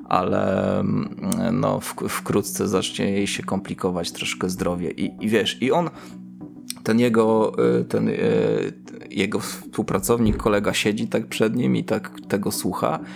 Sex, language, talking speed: male, Polish, 130 wpm